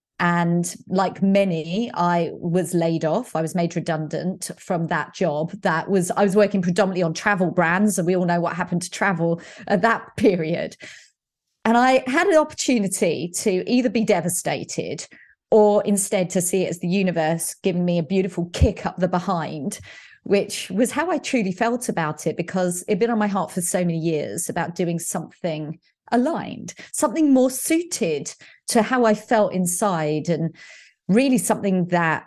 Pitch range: 170-205 Hz